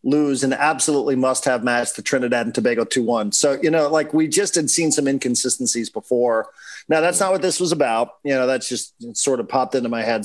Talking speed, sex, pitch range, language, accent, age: 240 wpm, male, 125-150 Hz, English, American, 40-59